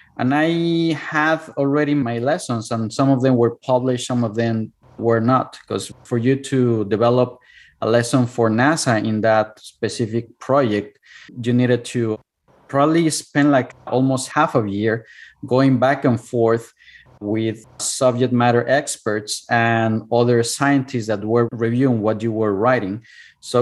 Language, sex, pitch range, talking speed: English, male, 110-130 Hz, 150 wpm